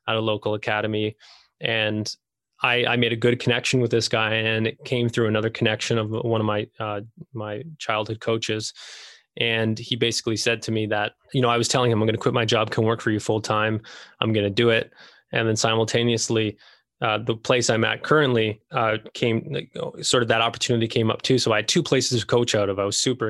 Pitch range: 105-120 Hz